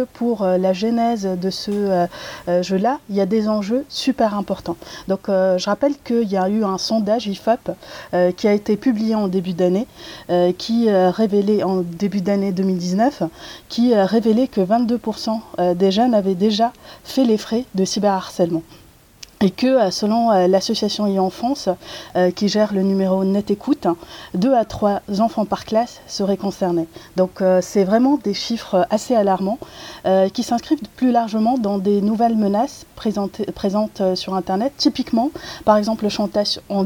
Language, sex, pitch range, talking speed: French, female, 190-230 Hz, 160 wpm